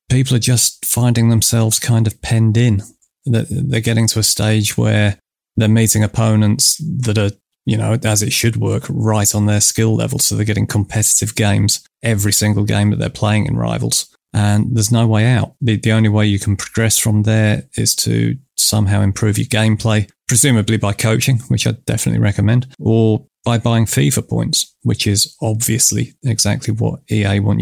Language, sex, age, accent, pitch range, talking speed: English, male, 30-49, British, 105-115 Hz, 180 wpm